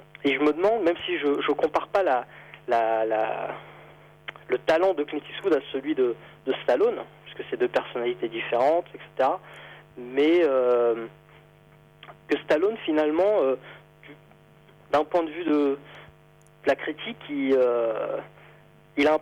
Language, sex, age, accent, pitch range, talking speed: French, male, 20-39, French, 130-175 Hz, 150 wpm